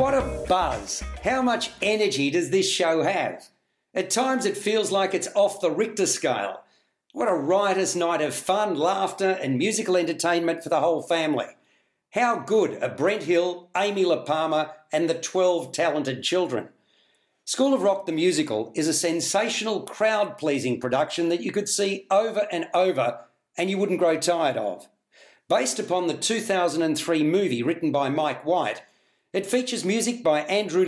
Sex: male